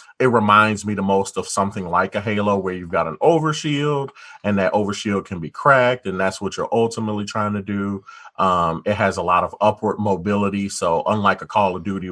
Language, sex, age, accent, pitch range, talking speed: English, male, 30-49, American, 95-115 Hz, 215 wpm